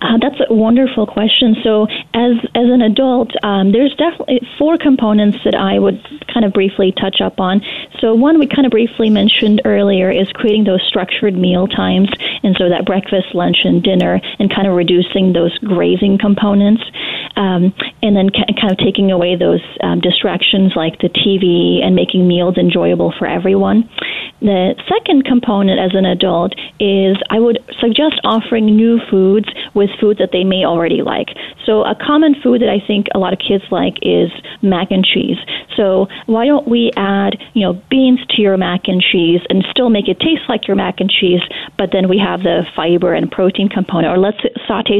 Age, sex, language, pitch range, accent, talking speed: 30-49, female, English, 185-225 Hz, American, 190 wpm